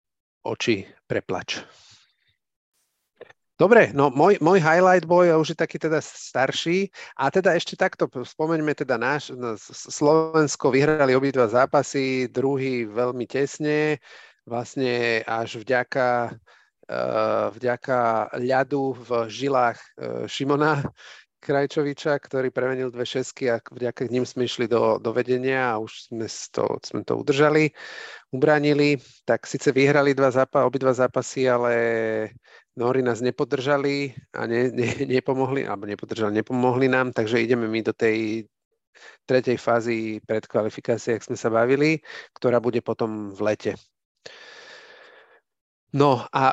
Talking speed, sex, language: 125 wpm, male, Slovak